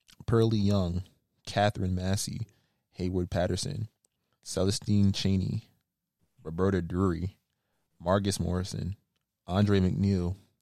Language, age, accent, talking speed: English, 20-39, American, 80 wpm